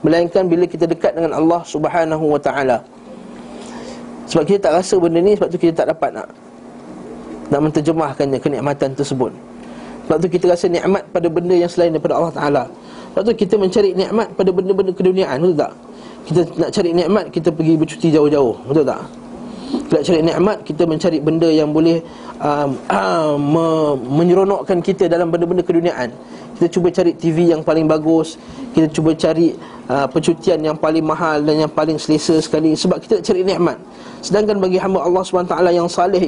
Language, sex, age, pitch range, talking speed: Malay, male, 20-39, 160-195 Hz, 170 wpm